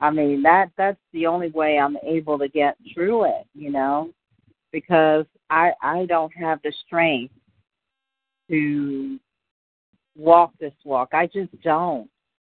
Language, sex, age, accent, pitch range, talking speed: English, female, 50-69, American, 145-195 Hz, 135 wpm